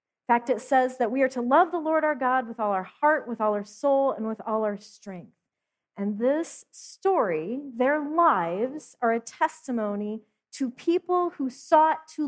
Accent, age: American, 40-59